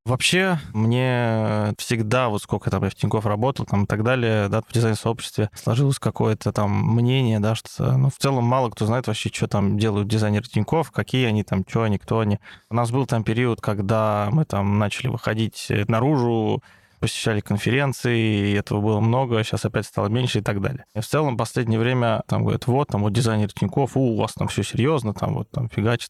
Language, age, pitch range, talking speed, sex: Russian, 20-39, 105-130 Hz, 205 wpm, male